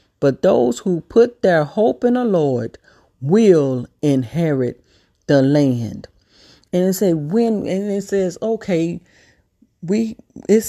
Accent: American